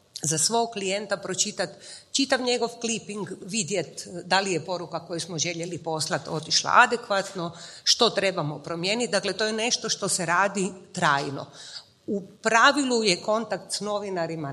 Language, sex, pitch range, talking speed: Croatian, female, 175-225 Hz, 145 wpm